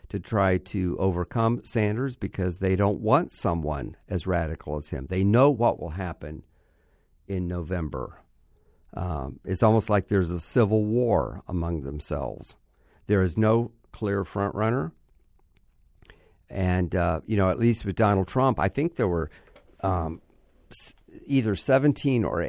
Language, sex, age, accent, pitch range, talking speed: English, male, 50-69, American, 85-105 Hz, 145 wpm